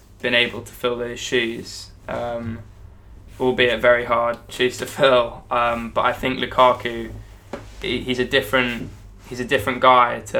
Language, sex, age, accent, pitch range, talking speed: English, male, 10-29, British, 105-125 Hz, 150 wpm